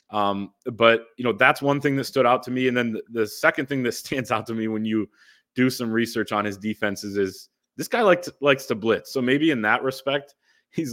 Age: 20-39